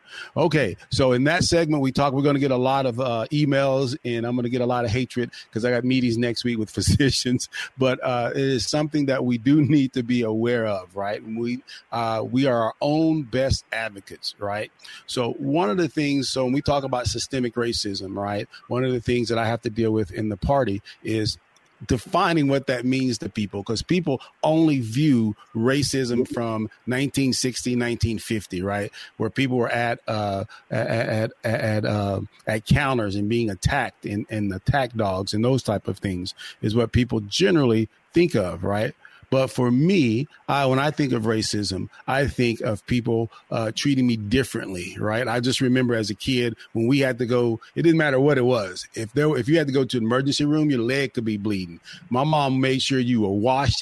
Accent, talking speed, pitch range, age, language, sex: American, 205 wpm, 110-135 Hz, 30-49, English, male